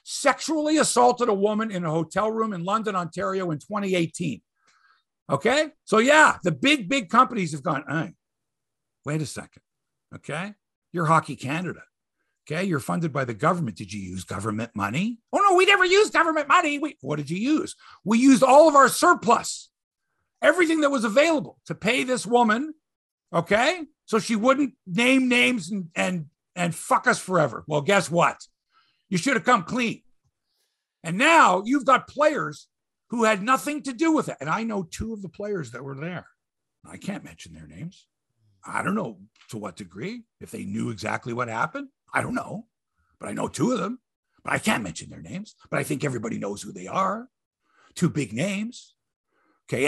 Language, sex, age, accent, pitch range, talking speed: English, male, 50-69, American, 160-265 Hz, 180 wpm